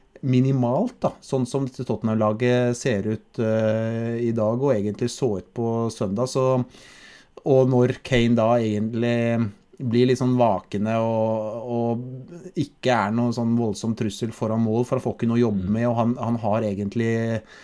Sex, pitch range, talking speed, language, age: male, 110-125 Hz, 155 wpm, English, 30-49